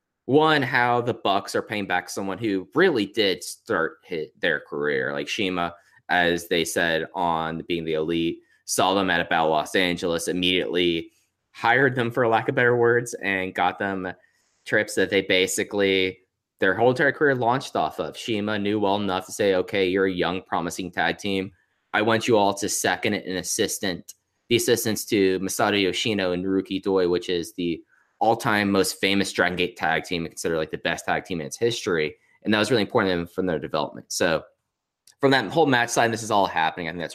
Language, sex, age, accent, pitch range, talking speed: English, male, 20-39, American, 85-100 Hz, 195 wpm